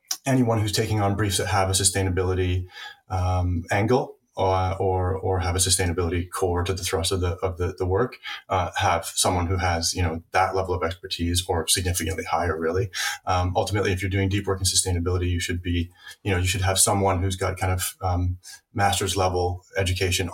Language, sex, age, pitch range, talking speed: English, male, 30-49, 90-105 Hz, 200 wpm